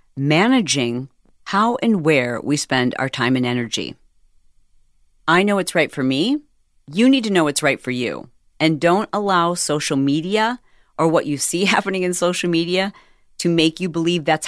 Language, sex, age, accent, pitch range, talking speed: English, female, 40-59, American, 145-195 Hz, 175 wpm